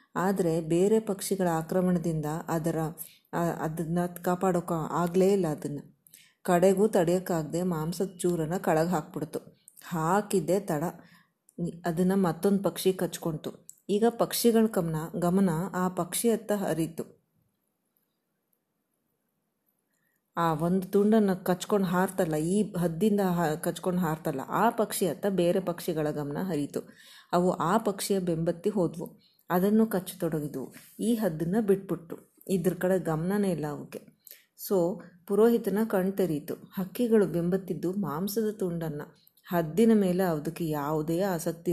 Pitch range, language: 165-195 Hz, Kannada